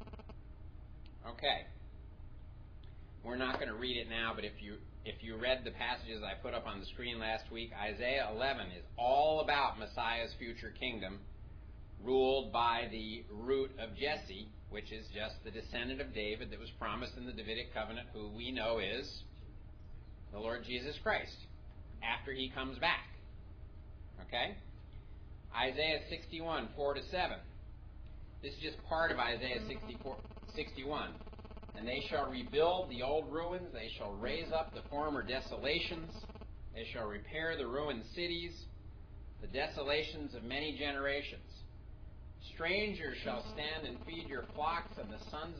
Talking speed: 145 wpm